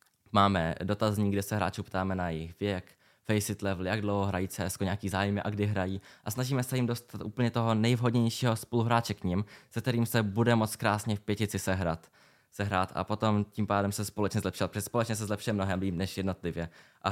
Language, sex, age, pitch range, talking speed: Czech, male, 20-39, 95-105 Hz, 195 wpm